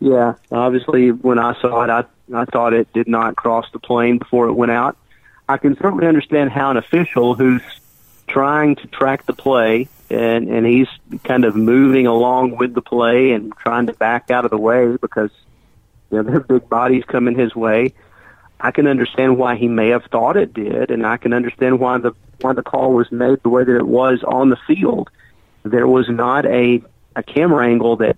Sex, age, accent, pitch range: male, 40-59, American, 115-130 Hz